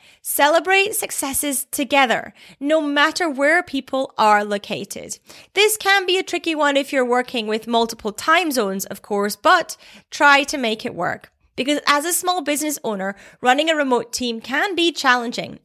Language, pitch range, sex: English, 215-290 Hz, female